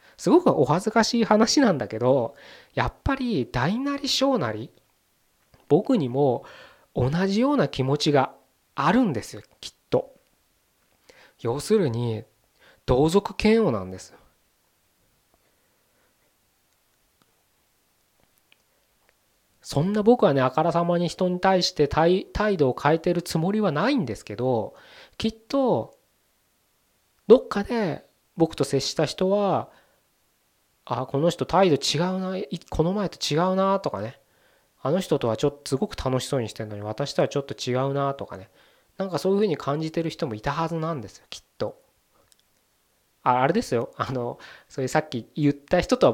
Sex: male